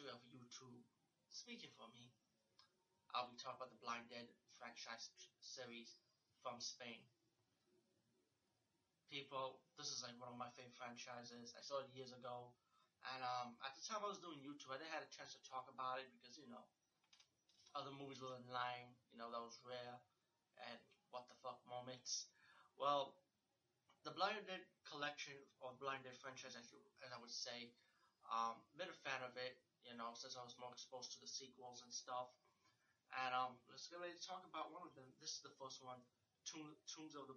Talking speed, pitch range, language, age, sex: 190 wpm, 125-140 Hz, English, 20-39, male